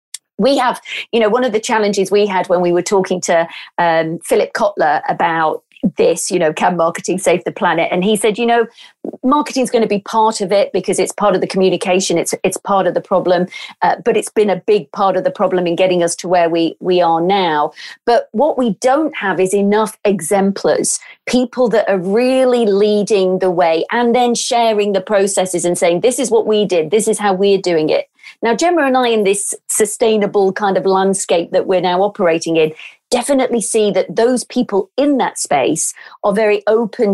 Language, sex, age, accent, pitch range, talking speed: English, female, 40-59, British, 180-220 Hz, 210 wpm